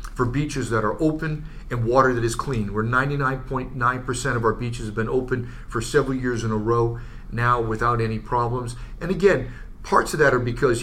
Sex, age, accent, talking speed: male, 40-59, American, 195 wpm